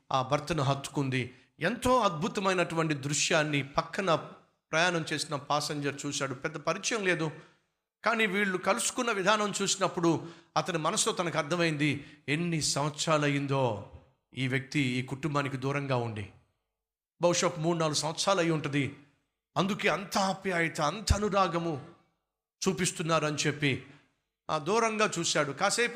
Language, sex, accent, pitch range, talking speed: Telugu, male, native, 140-185 Hz, 115 wpm